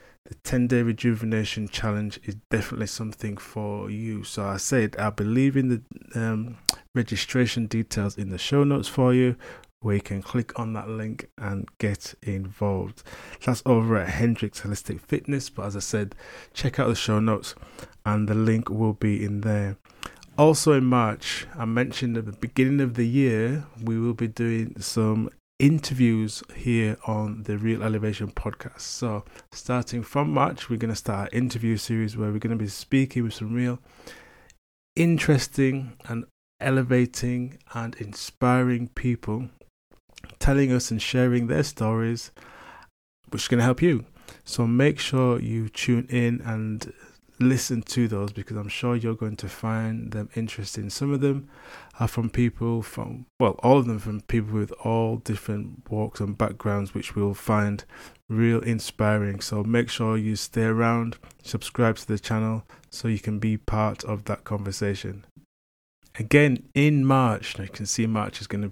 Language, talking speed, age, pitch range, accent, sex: English, 165 wpm, 20-39, 105-125 Hz, British, male